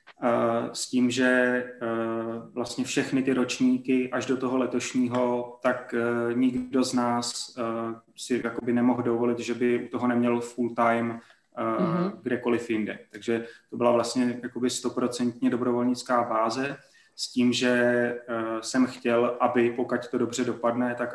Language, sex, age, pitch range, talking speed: Slovak, male, 20-39, 115-125 Hz, 120 wpm